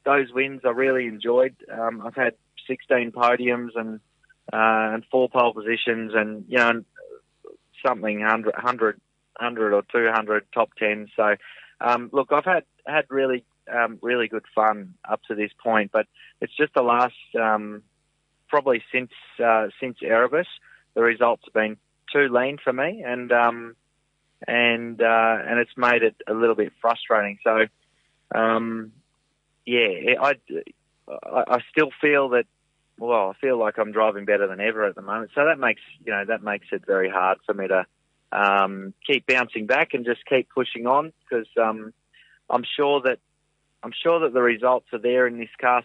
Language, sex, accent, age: English, male, Australian, 20-39